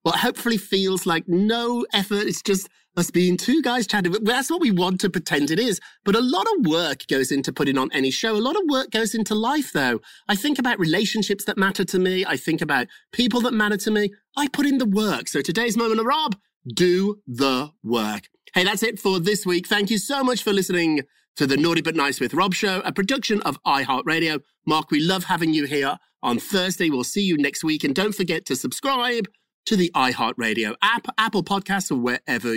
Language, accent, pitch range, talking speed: English, British, 155-230 Hz, 220 wpm